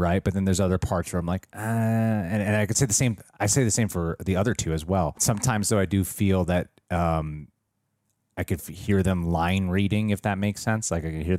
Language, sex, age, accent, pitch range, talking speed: English, male, 30-49, American, 85-100 Hz, 255 wpm